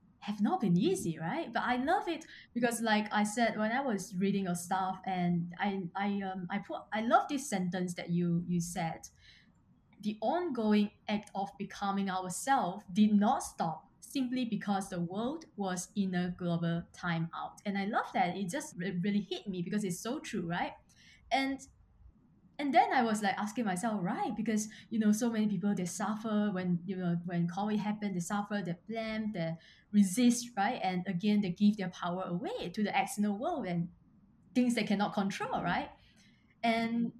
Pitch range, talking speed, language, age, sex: 185-220 Hz, 185 wpm, English, 20-39, female